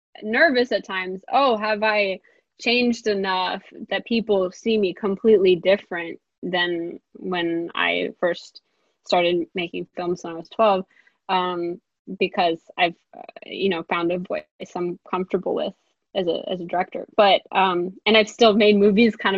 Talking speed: 150 wpm